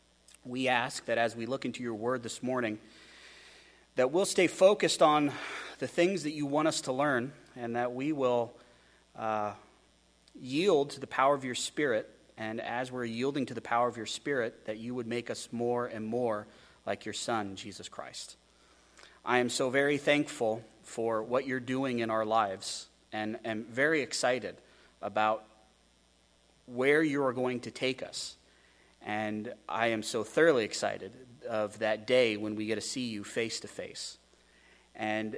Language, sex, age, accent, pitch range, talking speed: English, male, 30-49, American, 105-130 Hz, 175 wpm